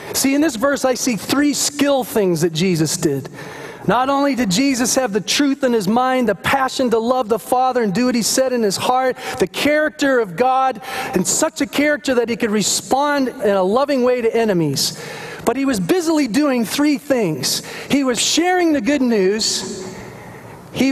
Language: English